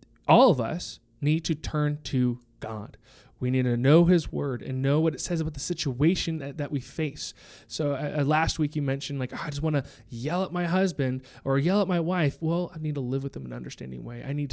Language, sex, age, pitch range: English, male, 20-39, 130-170 Hz